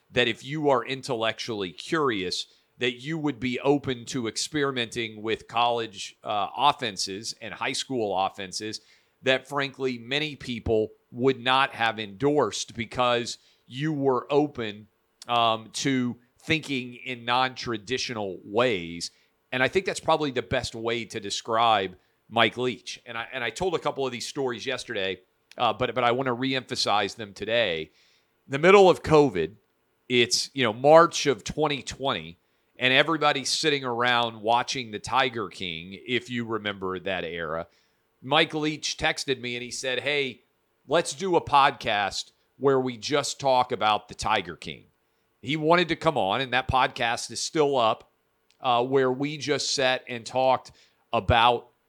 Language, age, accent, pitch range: English, 40-59, American, 115-140 Hz